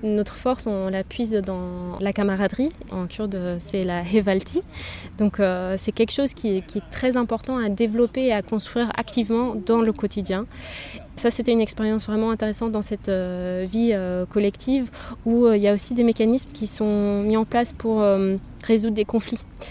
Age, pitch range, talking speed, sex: 20-39, 195-235 Hz, 175 wpm, female